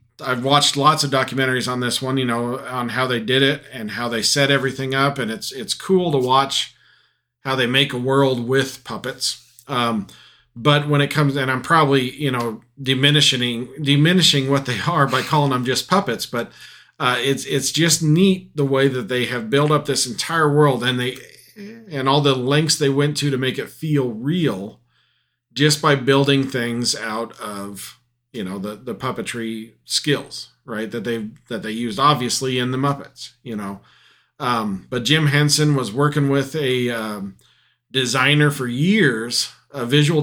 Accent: American